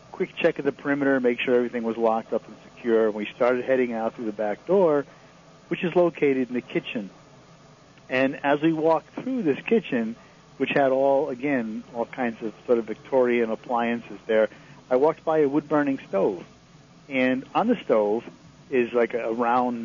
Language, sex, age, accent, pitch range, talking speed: English, male, 50-69, American, 120-155 Hz, 180 wpm